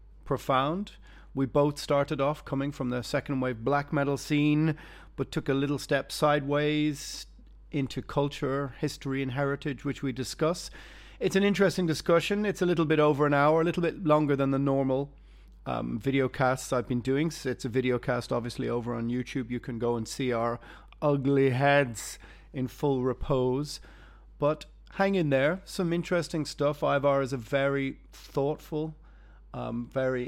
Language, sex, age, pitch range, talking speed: English, male, 30-49, 130-155 Hz, 165 wpm